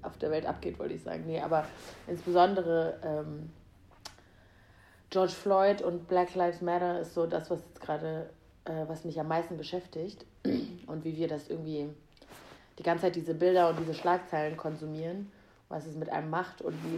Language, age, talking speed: German, 30-49, 175 wpm